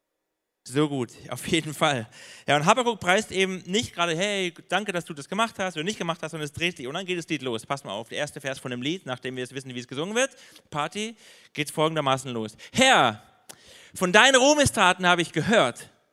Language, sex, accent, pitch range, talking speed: German, male, German, 130-180 Hz, 230 wpm